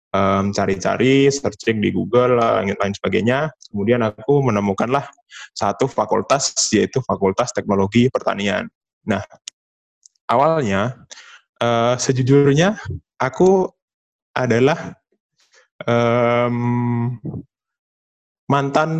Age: 20-39